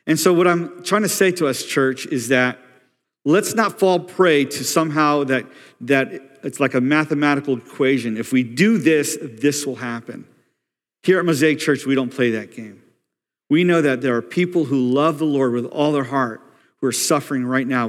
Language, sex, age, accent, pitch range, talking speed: English, male, 50-69, American, 130-160 Hz, 200 wpm